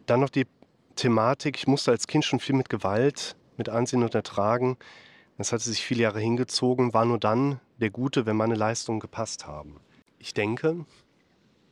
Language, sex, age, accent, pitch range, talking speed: German, male, 30-49, German, 110-135 Hz, 175 wpm